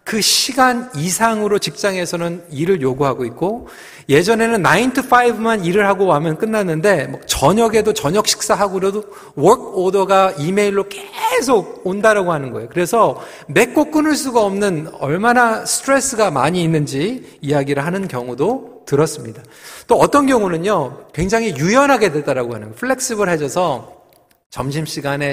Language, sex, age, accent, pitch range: Korean, male, 40-59, native, 150-220 Hz